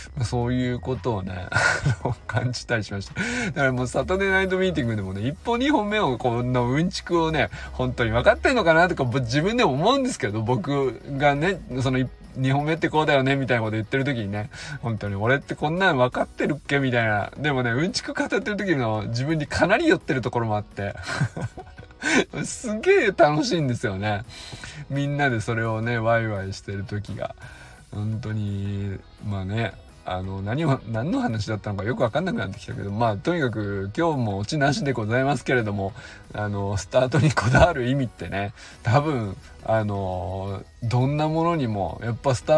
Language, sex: Japanese, male